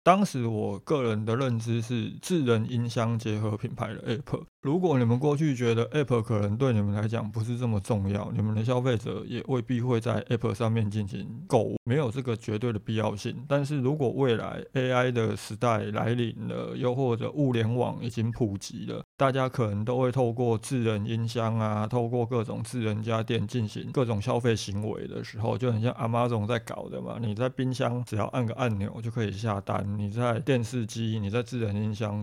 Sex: male